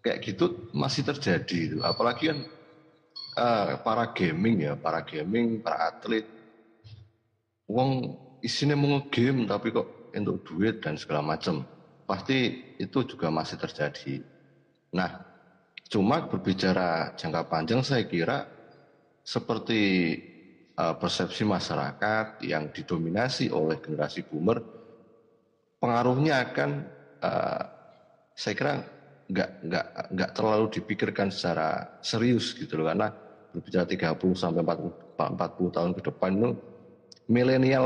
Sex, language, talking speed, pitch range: male, Indonesian, 115 wpm, 85-120 Hz